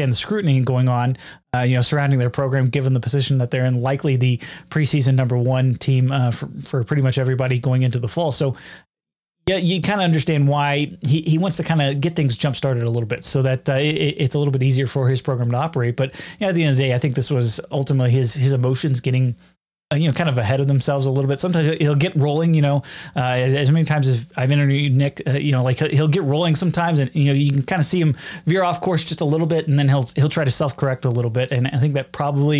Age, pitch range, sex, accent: 30-49, 130-150 Hz, male, American